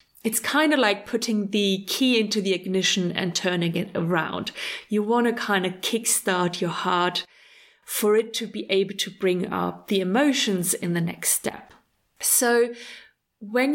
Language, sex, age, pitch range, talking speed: English, female, 30-49, 195-235 Hz, 165 wpm